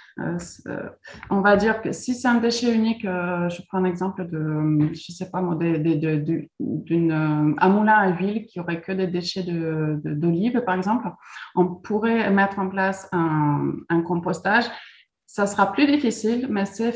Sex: female